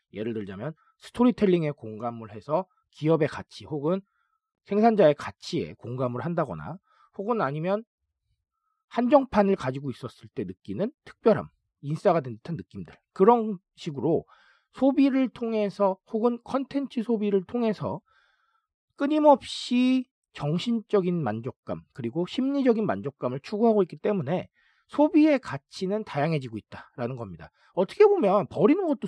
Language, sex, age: Korean, male, 40-59